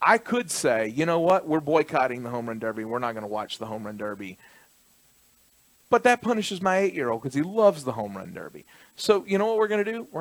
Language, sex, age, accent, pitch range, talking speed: English, male, 40-59, American, 120-165 Hz, 245 wpm